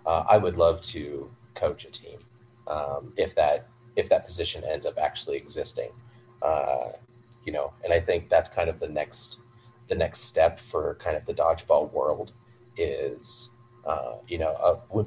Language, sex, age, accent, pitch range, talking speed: English, male, 30-49, American, 105-120 Hz, 175 wpm